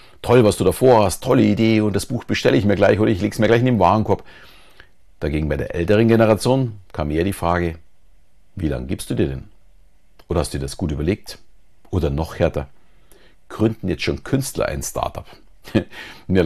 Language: German